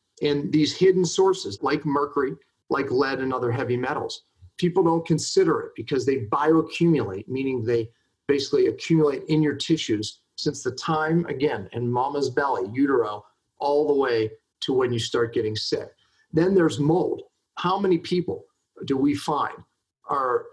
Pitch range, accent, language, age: 120-175 Hz, American, English, 40-59